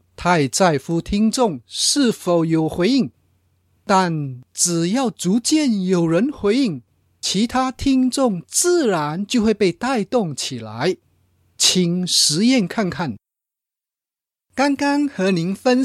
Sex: male